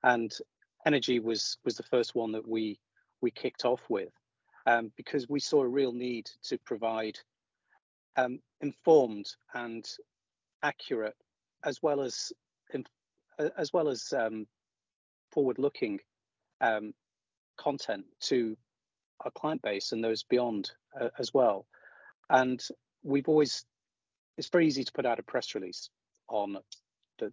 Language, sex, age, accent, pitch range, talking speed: English, male, 40-59, British, 110-135 Hz, 135 wpm